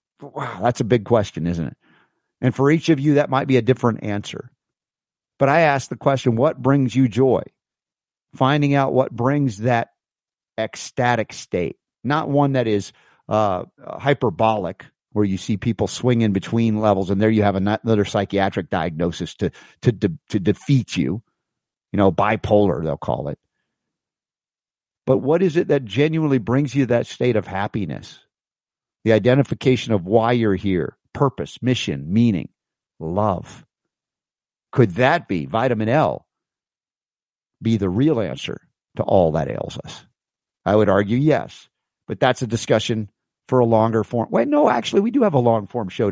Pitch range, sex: 105-140 Hz, male